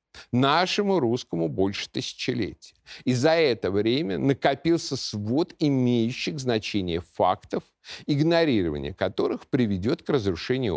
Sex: male